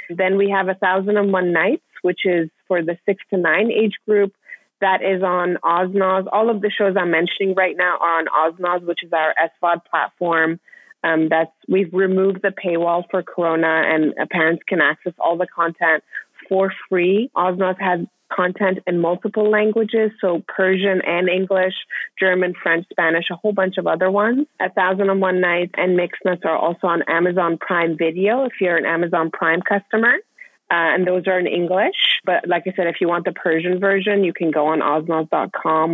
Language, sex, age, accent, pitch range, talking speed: English, female, 30-49, American, 165-195 Hz, 190 wpm